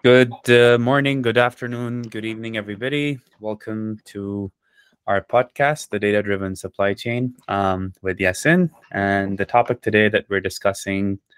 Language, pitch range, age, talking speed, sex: English, 95-115 Hz, 20-39, 135 wpm, male